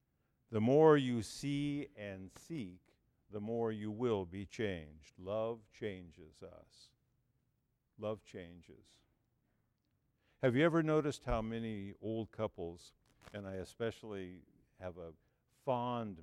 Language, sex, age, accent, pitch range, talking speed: English, male, 50-69, American, 90-125 Hz, 115 wpm